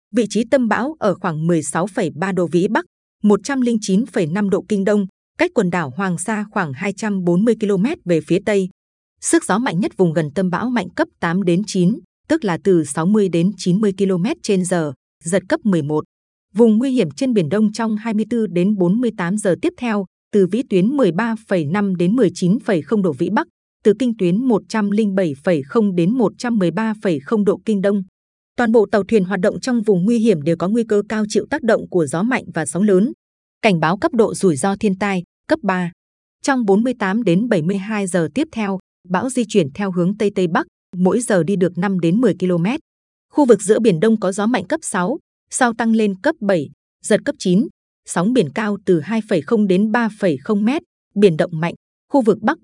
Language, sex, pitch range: Vietnamese, female, 185-225 Hz